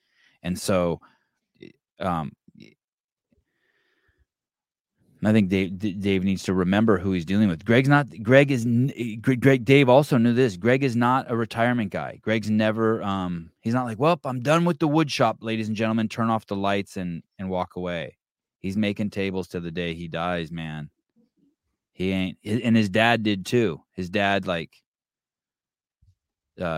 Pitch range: 95-130 Hz